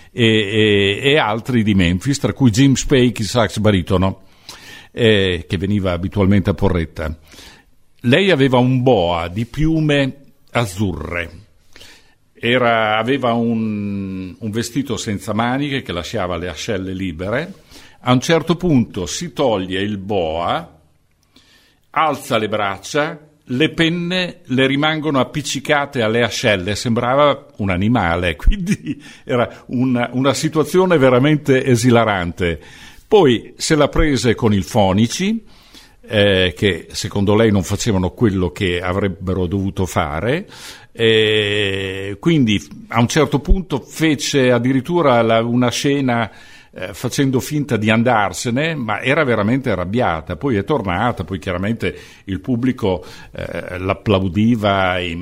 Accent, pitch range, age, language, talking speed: native, 95-130 Hz, 50-69, Italian, 120 wpm